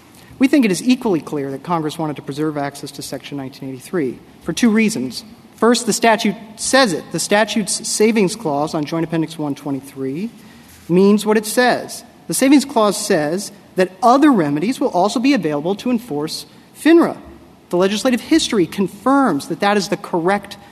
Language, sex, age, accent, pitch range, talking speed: English, male, 40-59, American, 165-230 Hz, 170 wpm